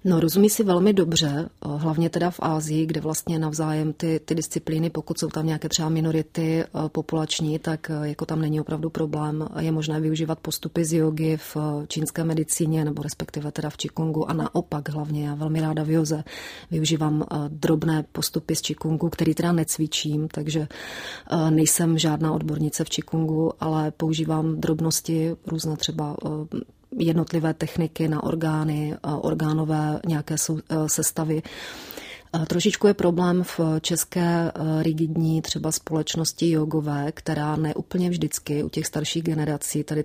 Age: 30-49